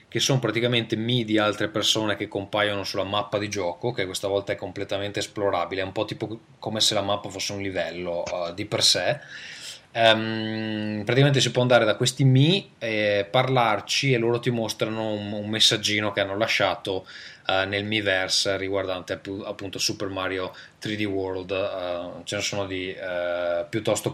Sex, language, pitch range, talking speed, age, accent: male, Italian, 95-120 Hz, 170 wpm, 20-39, native